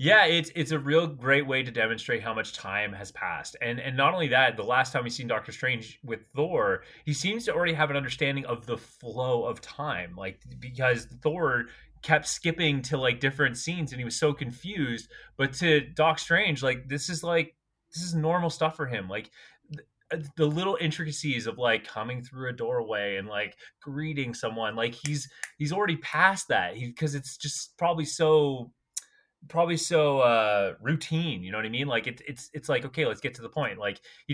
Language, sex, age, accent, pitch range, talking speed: English, male, 20-39, American, 120-160 Hz, 205 wpm